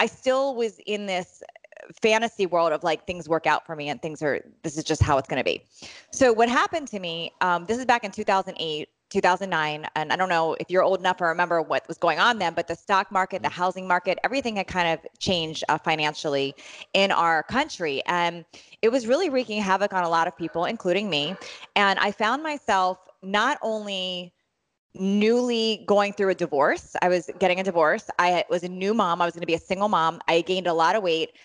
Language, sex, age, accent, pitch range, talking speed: English, female, 20-39, American, 170-210 Hz, 220 wpm